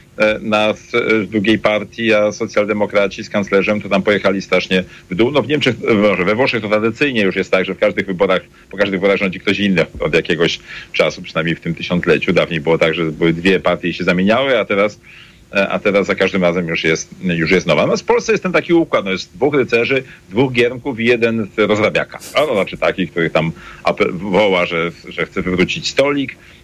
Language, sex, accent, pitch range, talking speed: Polish, male, native, 90-125 Hz, 205 wpm